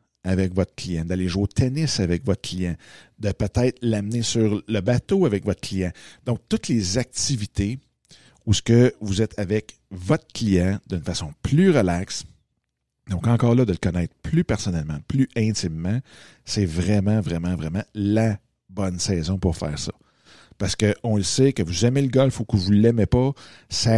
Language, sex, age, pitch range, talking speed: French, male, 50-69, 95-120 Hz, 180 wpm